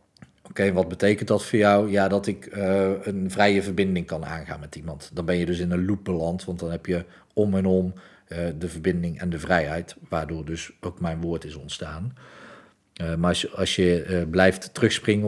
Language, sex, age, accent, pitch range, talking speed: Dutch, male, 40-59, Dutch, 85-100 Hz, 210 wpm